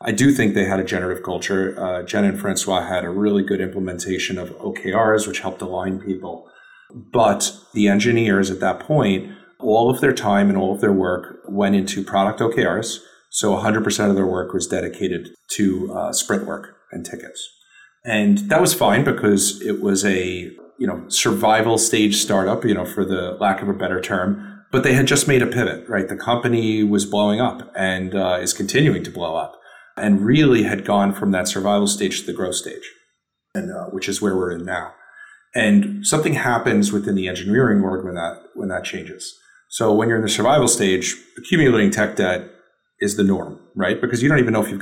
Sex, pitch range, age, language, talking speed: male, 95-115 Hz, 40-59, English, 200 wpm